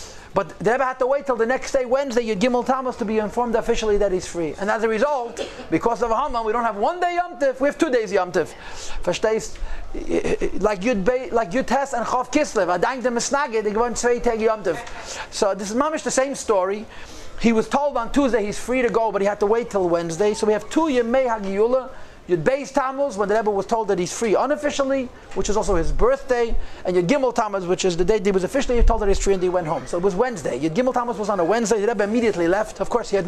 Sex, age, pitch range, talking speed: male, 40-59, 200-250 Hz, 235 wpm